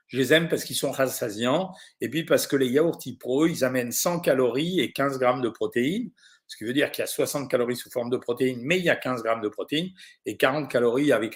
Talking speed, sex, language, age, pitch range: 255 wpm, male, French, 50-69, 135-210 Hz